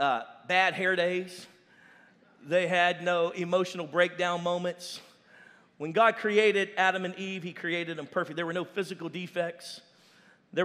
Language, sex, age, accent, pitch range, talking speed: English, male, 40-59, American, 155-200 Hz, 145 wpm